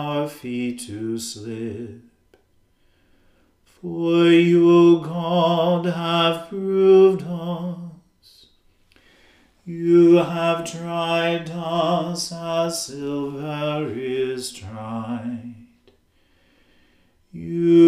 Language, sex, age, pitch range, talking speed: English, male, 40-59, 145-170 Hz, 60 wpm